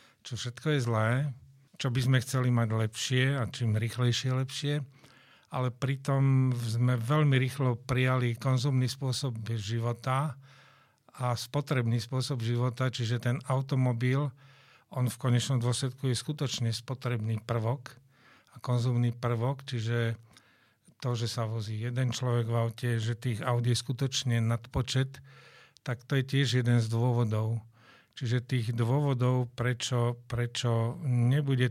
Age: 50-69